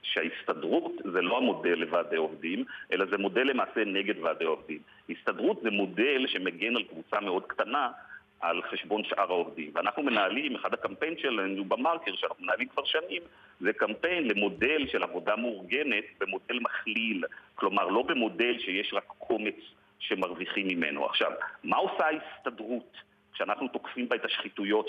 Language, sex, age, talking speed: Hebrew, male, 50-69, 145 wpm